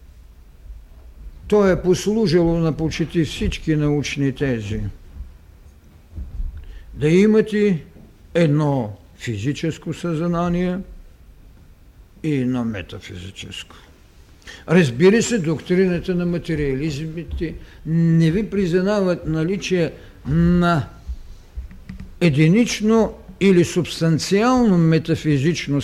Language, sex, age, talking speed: Bulgarian, male, 60-79, 70 wpm